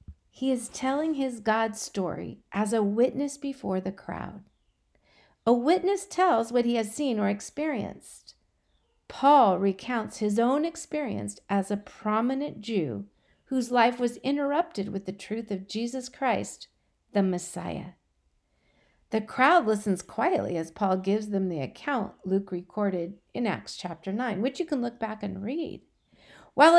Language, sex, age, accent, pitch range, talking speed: English, female, 50-69, American, 200-275 Hz, 150 wpm